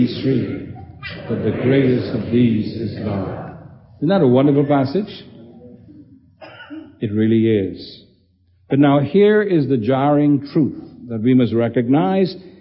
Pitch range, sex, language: 110-160 Hz, male, English